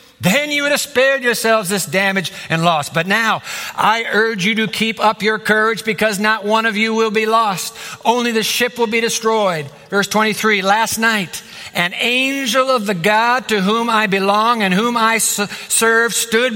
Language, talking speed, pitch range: English, 190 wpm, 180-225 Hz